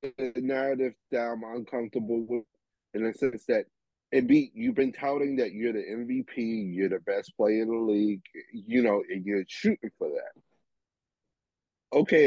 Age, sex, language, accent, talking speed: 30-49, male, English, American, 160 wpm